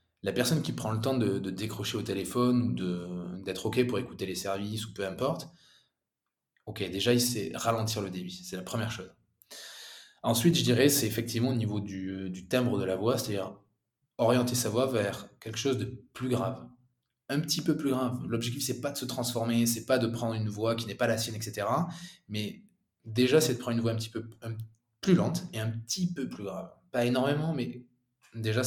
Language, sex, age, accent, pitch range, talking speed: French, male, 20-39, French, 110-130 Hz, 215 wpm